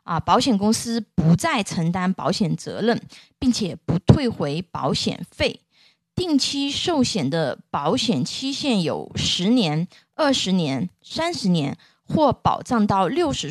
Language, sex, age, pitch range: Chinese, female, 20-39, 180-265 Hz